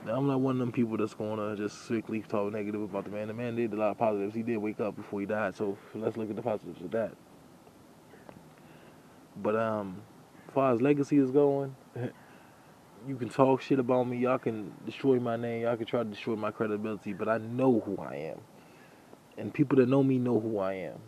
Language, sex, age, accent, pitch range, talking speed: English, male, 20-39, American, 105-125 Hz, 230 wpm